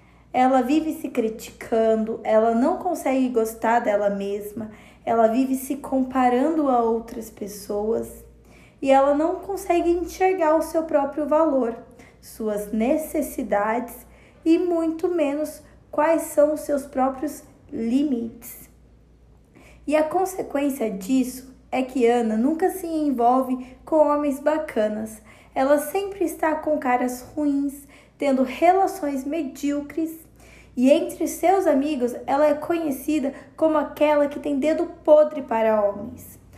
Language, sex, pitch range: Portuguese, female, 245-310 Hz